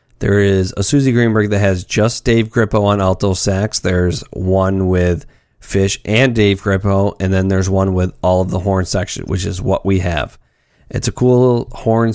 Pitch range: 95-115 Hz